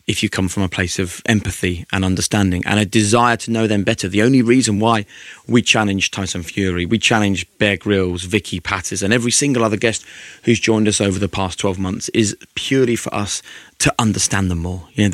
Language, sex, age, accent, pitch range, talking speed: English, male, 20-39, British, 95-115 Hz, 215 wpm